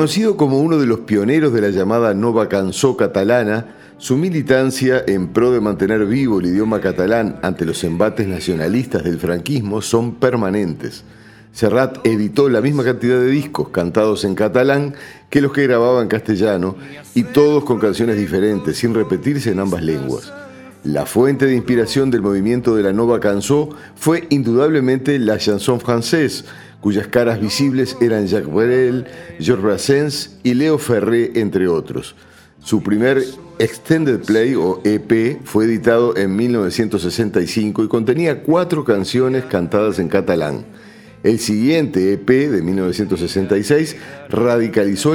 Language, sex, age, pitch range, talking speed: Spanish, male, 50-69, 105-130 Hz, 140 wpm